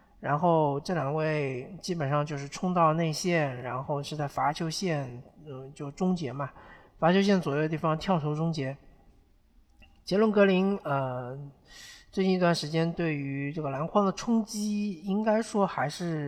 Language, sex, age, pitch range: Chinese, male, 50-69, 140-185 Hz